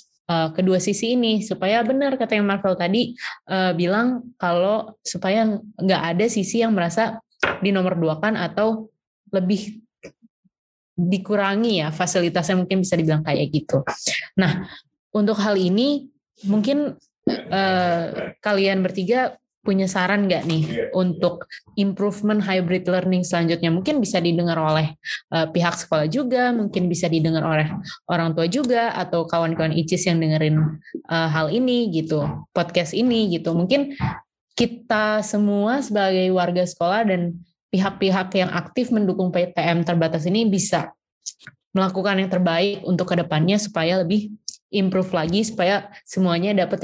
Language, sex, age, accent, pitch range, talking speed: Indonesian, female, 20-39, native, 170-210 Hz, 130 wpm